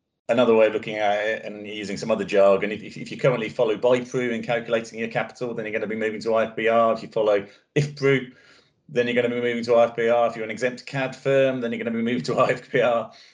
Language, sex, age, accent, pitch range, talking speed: English, male, 30-49, British, 100-125 Hz, 250 wpm